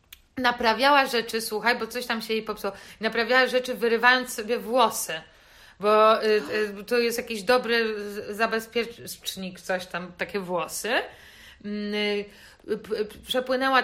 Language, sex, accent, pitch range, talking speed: Polish, female, native, 205-255 Hz, 110 wpm